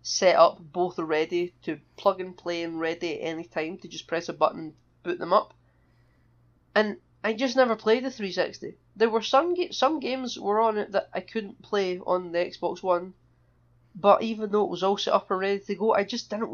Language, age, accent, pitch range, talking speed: English, 20-39, British, 170-200 Hz, 220 wpm